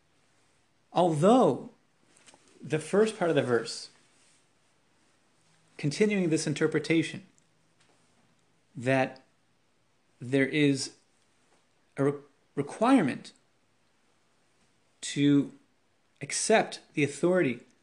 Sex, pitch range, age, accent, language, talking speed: male, 135-170 Hz, 30-49, American, English, 65 wpm